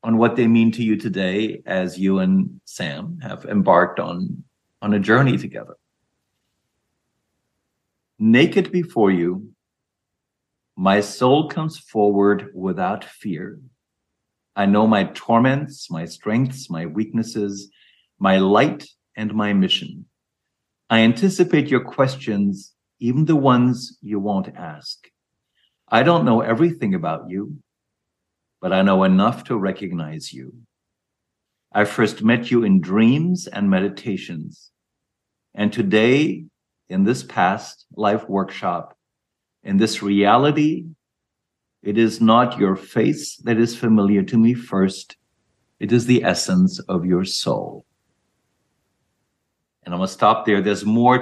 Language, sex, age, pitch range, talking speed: English, male, 50-69, 100-130 Hz, 125 wpm